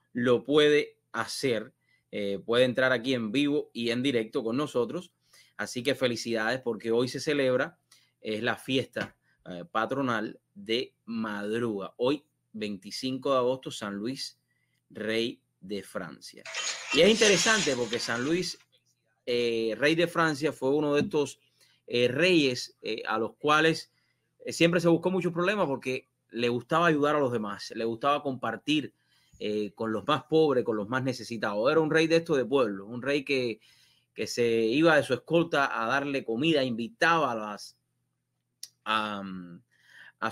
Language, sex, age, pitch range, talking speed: English, male, 30-49, 110-150 Hz, 155 wpm